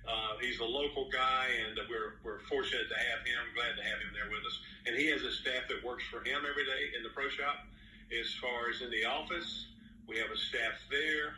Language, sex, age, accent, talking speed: English, male, 50-69, American, 245 wpm